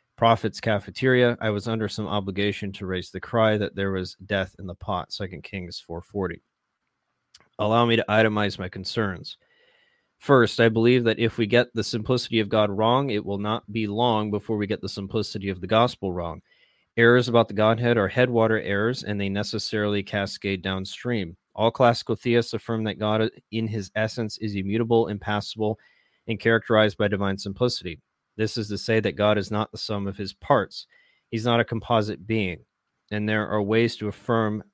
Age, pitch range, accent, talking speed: 30-49, 100-115 Hz, American, 185 wpm